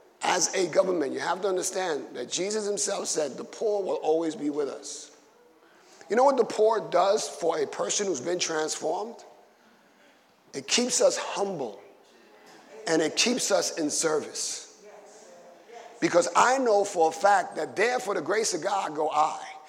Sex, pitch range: male, 195-255 Hz